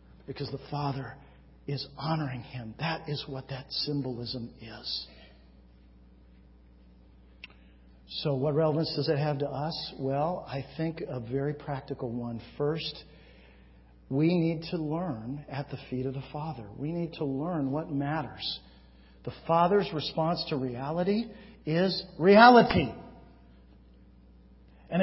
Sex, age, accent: male, 50-69, American